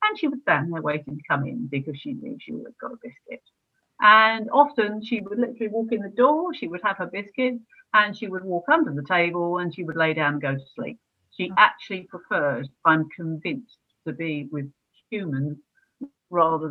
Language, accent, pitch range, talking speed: English, British, 155-230 Hz, 210 wpm